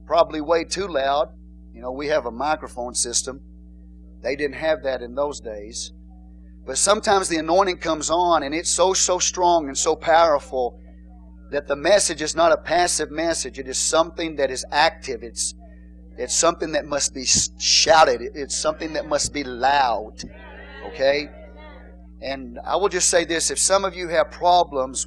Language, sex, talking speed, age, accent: English, male, 170 wpm, 40-59, American